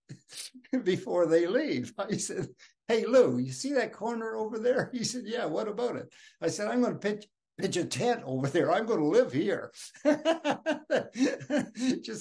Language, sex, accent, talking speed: English, male, American, 175 wpm